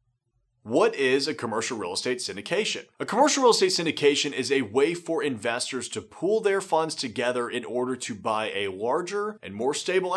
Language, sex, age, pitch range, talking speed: English, male, 30-49, 125-175 Hz, 185 wpm